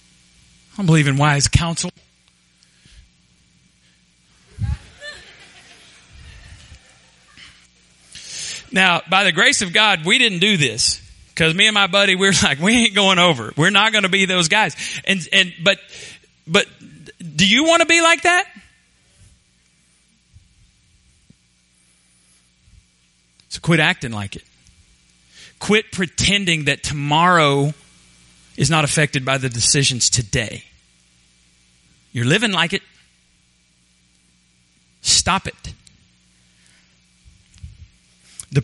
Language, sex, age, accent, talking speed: English, male, 40-59, American, 105 wpm